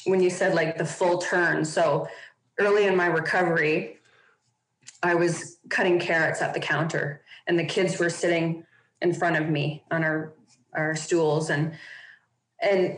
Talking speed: 155 wpm